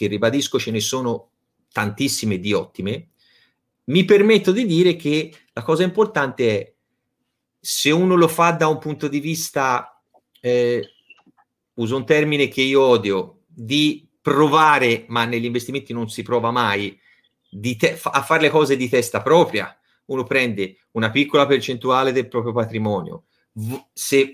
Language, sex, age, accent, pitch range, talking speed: Italian, male, 30-49, native, 110-140 Hz, 150 wpm